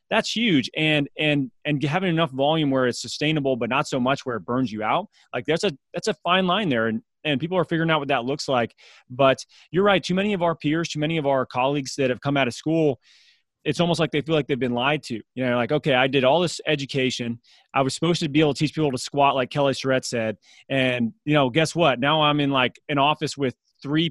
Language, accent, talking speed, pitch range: English, American, 260 wpm, 125-155 Hz